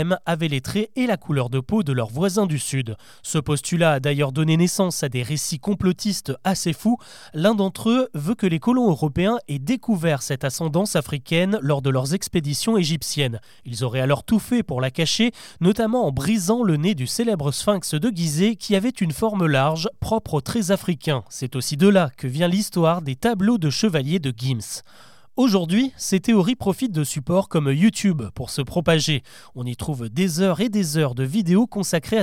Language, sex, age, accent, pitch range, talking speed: French, male, 30-49, French, 150-210 Hz, 195 wpm